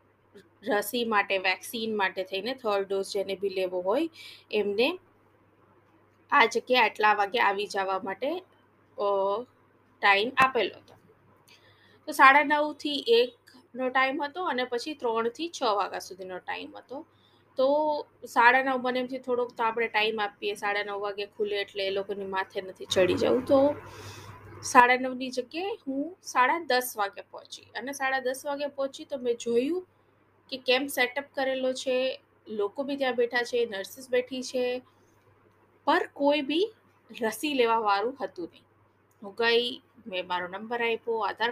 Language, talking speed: Hindi, 125 wpm